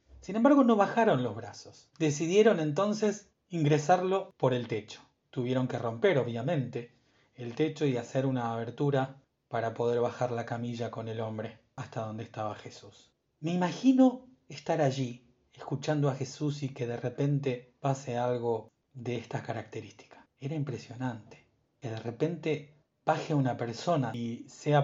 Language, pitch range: Spanish, 120-155 Hz